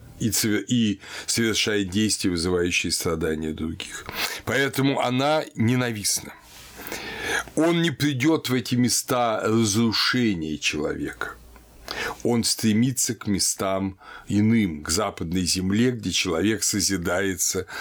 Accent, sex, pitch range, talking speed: native, male, 90-125 Hz, 95 wpm